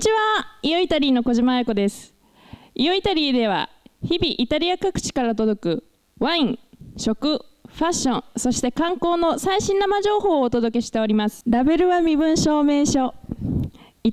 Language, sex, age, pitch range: Japanese, female, 20-39, 220-320 Hz